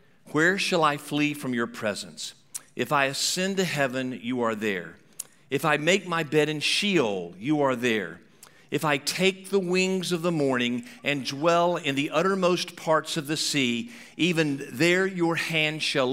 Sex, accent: male, American